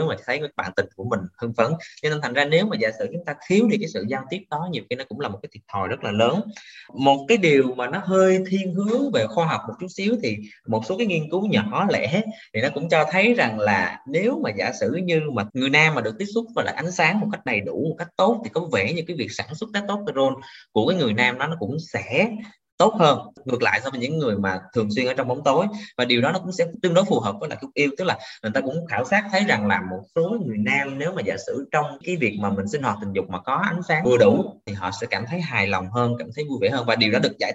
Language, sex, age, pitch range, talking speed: Vietnamese, male, 20-39, 125-185 Hz, 300 wpm